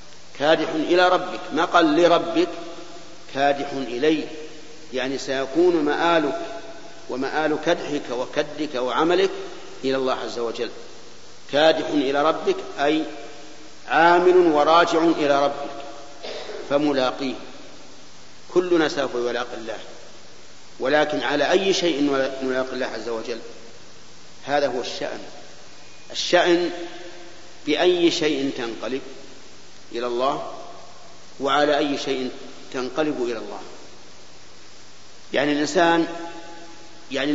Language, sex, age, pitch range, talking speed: Arabic, male, 50-69, 140-170 Hz, 90 wpm